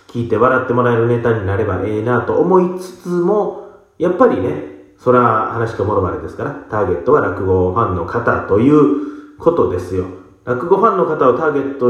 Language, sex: Japanese, male